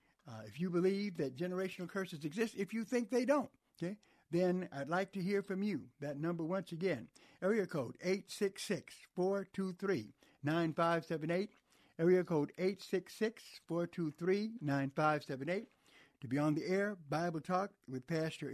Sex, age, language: male, 60-79, English